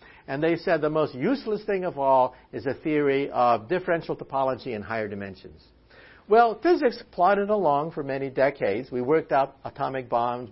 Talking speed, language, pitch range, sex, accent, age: 170 wpm, English, 120-185 Hz, male, American, 50-69